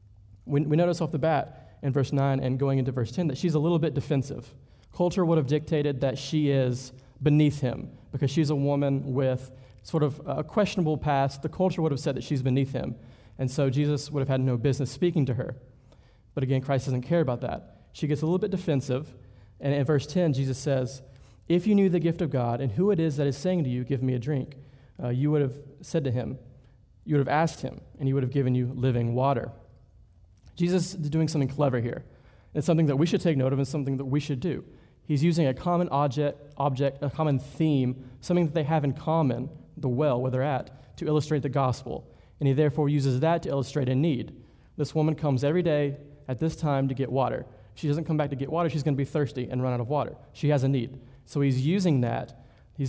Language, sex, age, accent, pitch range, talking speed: English, male, 30-49, American, 130-155 Hz, 235 wpm